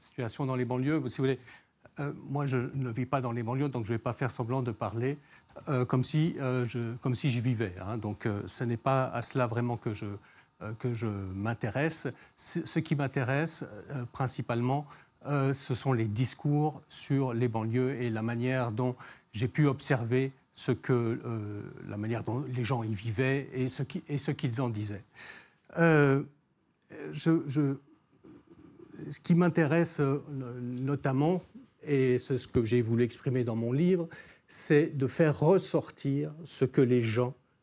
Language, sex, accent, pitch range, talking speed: French, male, French, 120-145 Hz, 165 wpm